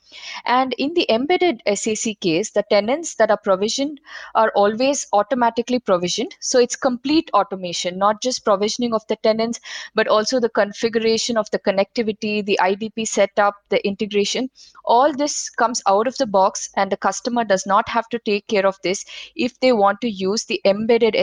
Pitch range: 195-240 Hz